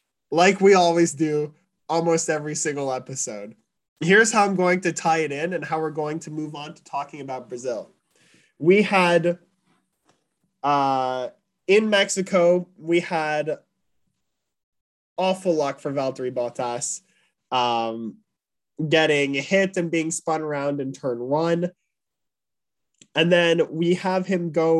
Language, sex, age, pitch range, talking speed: English, male, 20-39, 145-185 Hz, 135 wpm